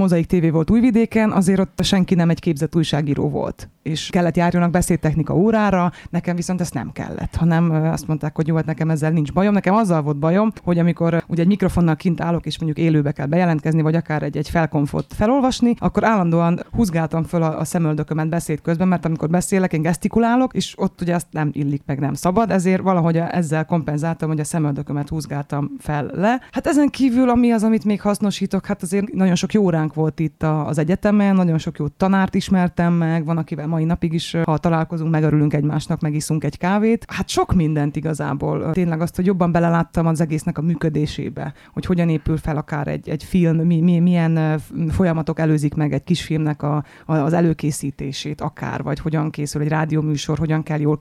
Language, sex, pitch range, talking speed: Hungarian, female, 155-185 Hz, 195 wpm